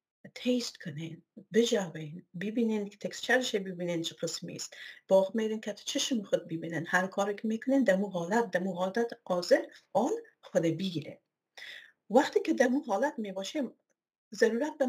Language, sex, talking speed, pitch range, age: Persian, female, 145 wpm, 185-240 Hz, 50-69